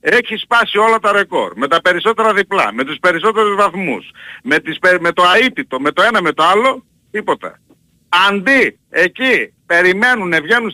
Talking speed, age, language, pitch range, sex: 160 wpm, 60-79, Greek, 175-240 Hz, male